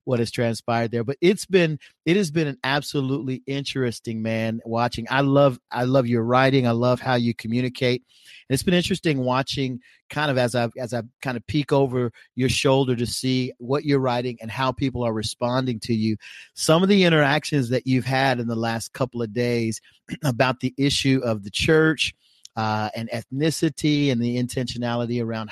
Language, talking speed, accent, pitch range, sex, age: English, 190 wpm, American, 120-145 Hz, male, 40-59